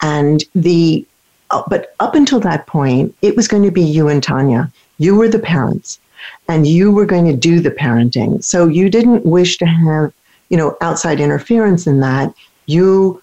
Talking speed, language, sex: 185 wpm, English, female